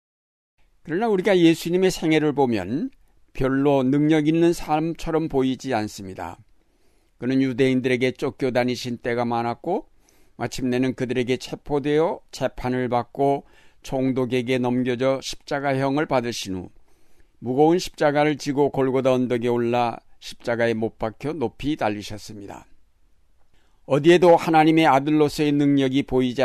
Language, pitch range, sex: Korean, 120-150 Hz, male